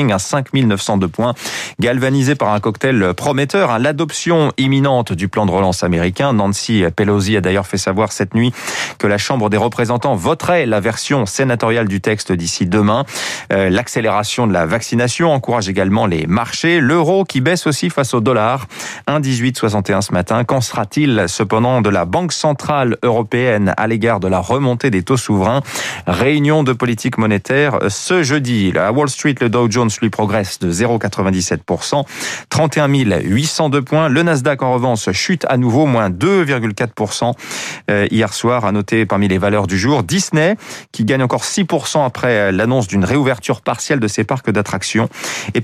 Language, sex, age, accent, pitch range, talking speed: French, male, 30-49, French, 105-140 Hz, 160 wpm